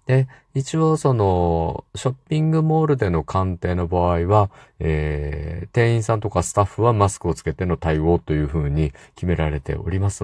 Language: Japanese